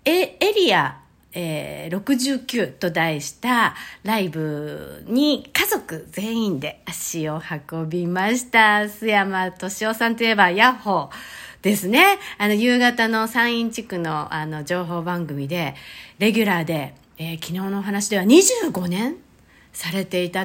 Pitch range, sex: 175-285 Hz, female